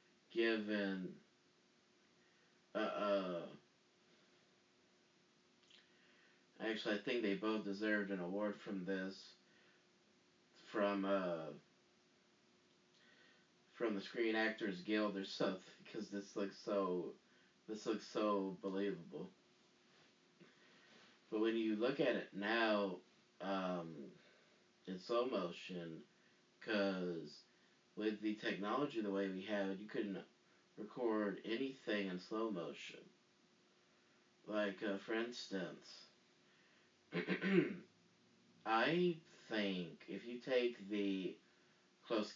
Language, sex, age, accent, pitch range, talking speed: English, male, 30-49, American, 95-110 Hz, 95 wpm